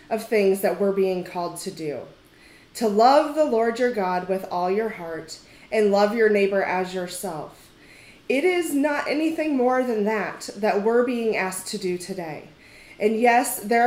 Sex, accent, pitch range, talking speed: female, American, 185-240 Hz, 175 wpm